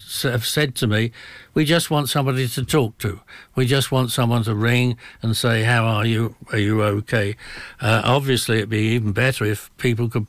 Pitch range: 115-135 Hz